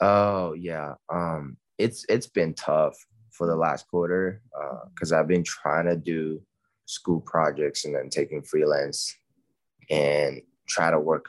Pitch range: 85-110 Hz